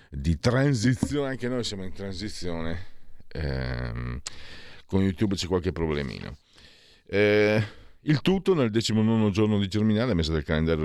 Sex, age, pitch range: male, 50-69, 80-105 Hz